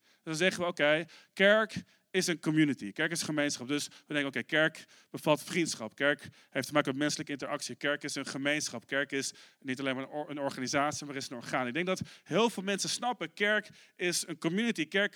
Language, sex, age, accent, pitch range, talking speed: Dutch, male, 40-59, Dutch, 160-220 Hz, 210 wpm